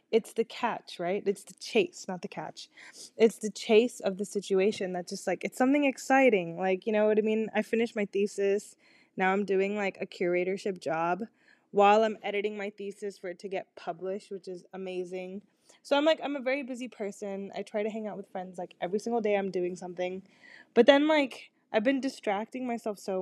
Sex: female